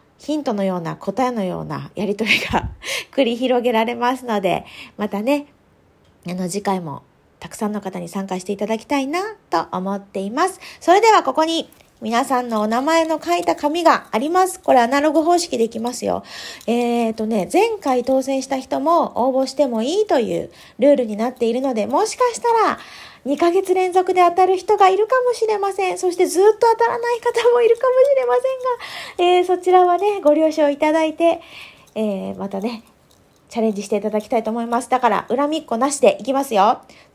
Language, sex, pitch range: Japanese, female, 245-375 Hz